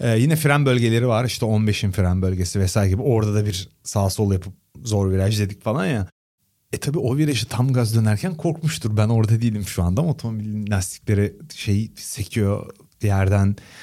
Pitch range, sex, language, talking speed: 100-135 Hz, male, Turkish, 180 wpm